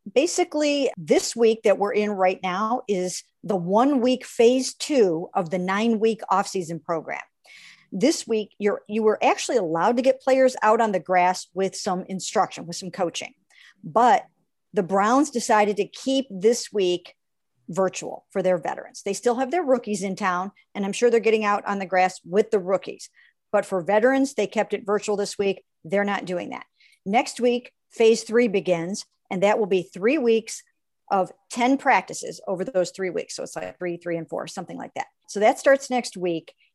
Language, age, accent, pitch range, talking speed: English, 50-69, American, 185-230 Hz, 195 wpm